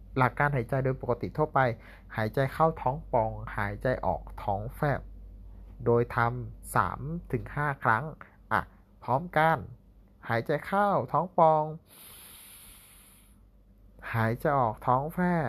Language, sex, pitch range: Thai, male, 100-135 Hz